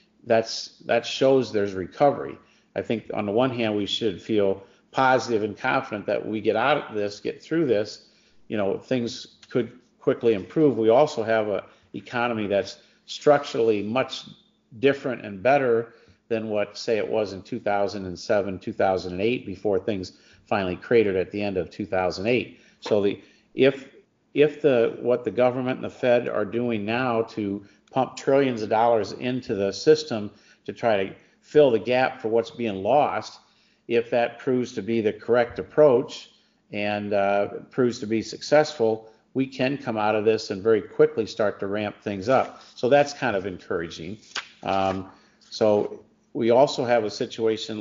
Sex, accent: male, American